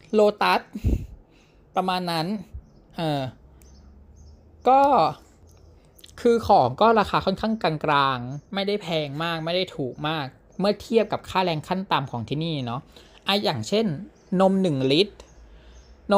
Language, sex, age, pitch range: Thai, male, 20-39, 140-205 Hz